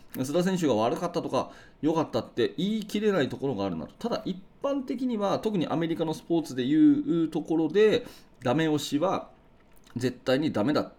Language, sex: Japanese, male